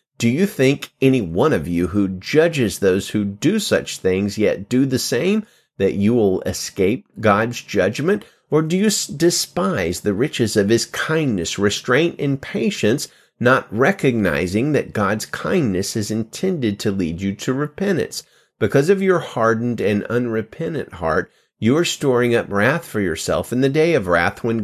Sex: male